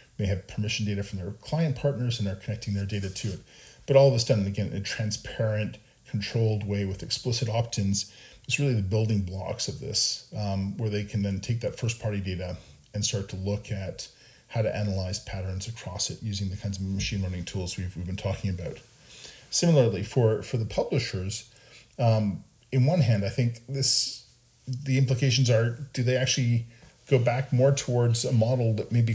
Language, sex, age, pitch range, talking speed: English, male, 40-59, 100-125 Hz, 195 wpm